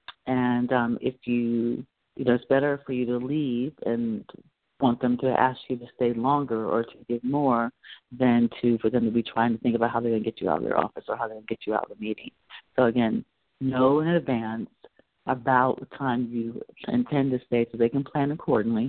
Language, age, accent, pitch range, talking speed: English, 50-69, American, 120-145 Hz, 225 wpm